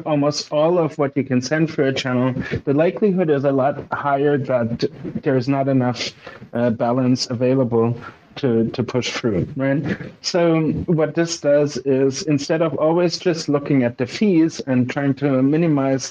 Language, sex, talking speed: English, male, 170 wpm